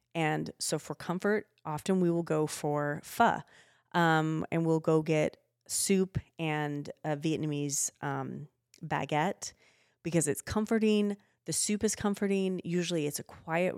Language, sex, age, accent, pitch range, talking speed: English, female, 30-49, American, 155-200 Hz, 140 wpm